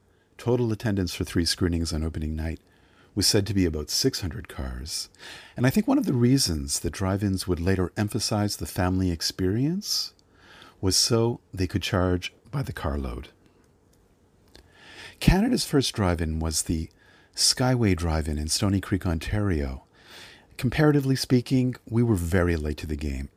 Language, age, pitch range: English, 50-69, 85-120 Hz